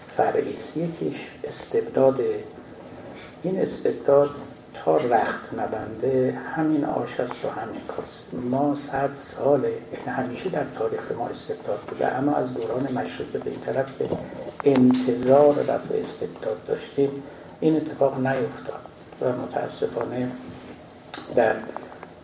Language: Persian